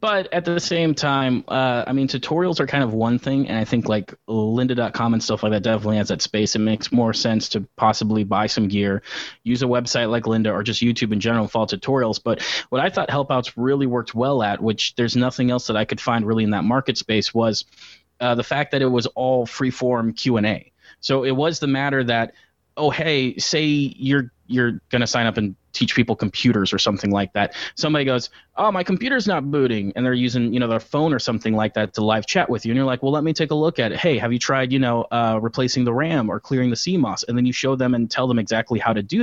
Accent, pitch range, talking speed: American, 110-135 Hz, 250 wpm